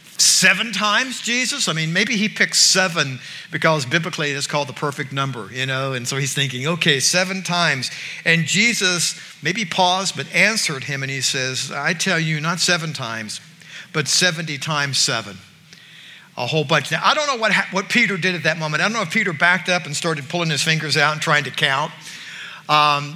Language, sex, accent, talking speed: English, male, American, 200 wpm